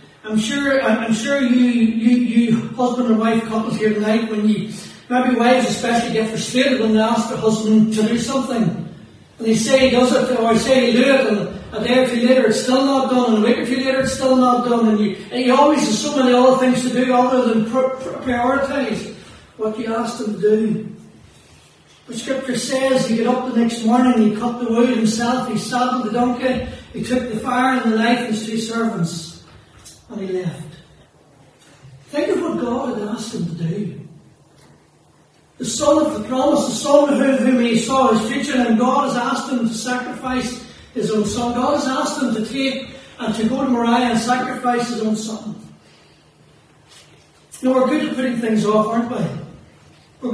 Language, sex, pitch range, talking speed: English, male, 215-255 Hz, 205 wpm